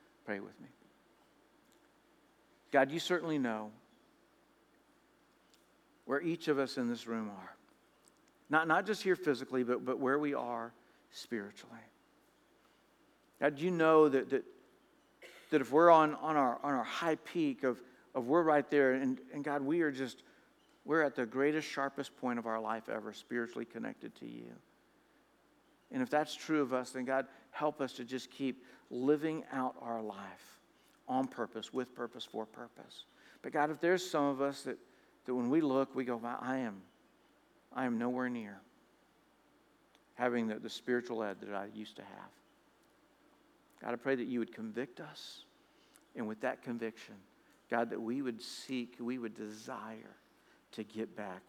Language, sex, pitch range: English, male, 110-145 Hz